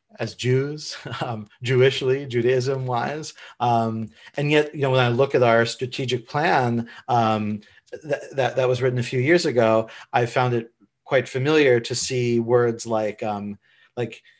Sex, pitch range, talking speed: male, 115-140 Hz, 160 wpm